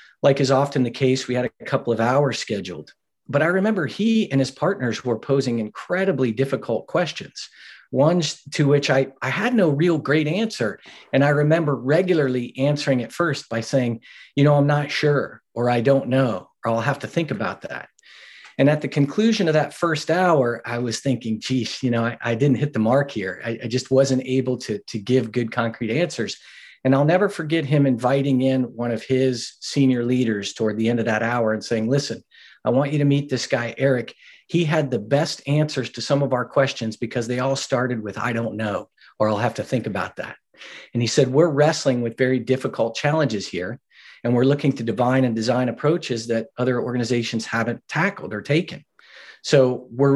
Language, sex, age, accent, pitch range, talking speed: English, male, 40-59, American, 120-145 Hz, 205 wpm